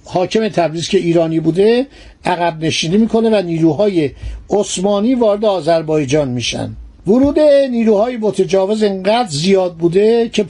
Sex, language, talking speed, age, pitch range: male, Persian, 120 wpm, 60-79, 185-230 Hz